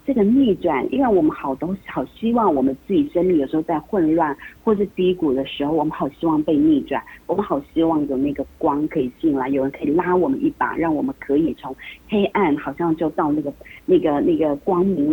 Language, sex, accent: Chinese, female, native